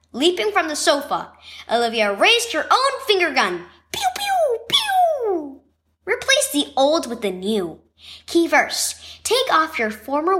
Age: 10-29